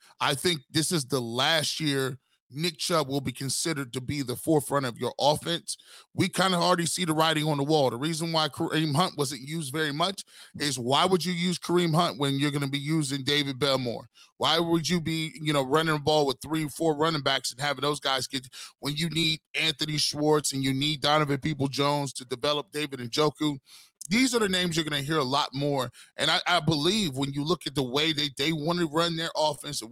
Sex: male